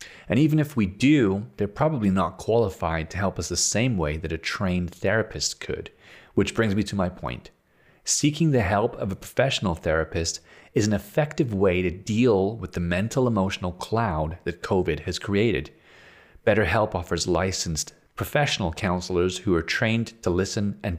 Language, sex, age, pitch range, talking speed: English, male, 30-49, 90-115 Hz, 170 wpm